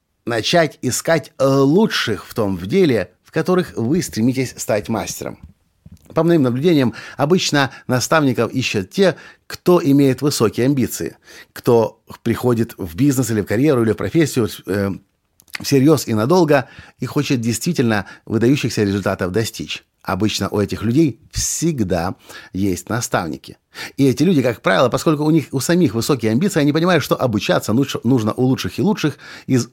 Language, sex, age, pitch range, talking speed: Russian, male, 50-69, 105-145 Hz, 145 wpm